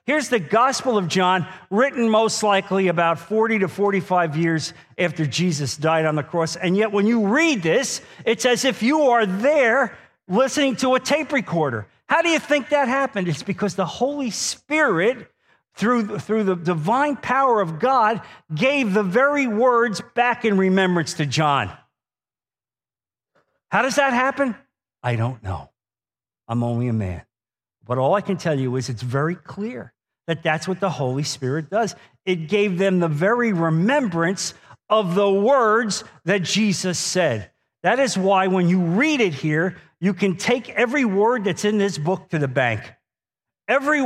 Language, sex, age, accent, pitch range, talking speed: English, male, 50-69, American, 155-225 Hz, 170 wpm